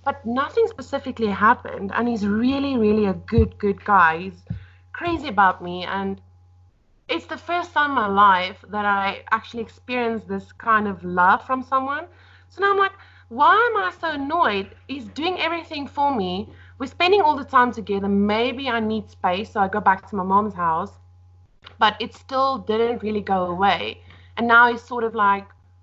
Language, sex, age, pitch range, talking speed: English, female, 30-49, 195-260 Hz, 185 wpm